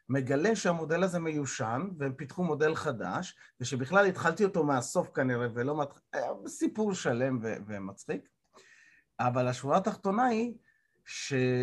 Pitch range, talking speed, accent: 120-180 Hz, 120 wpm, native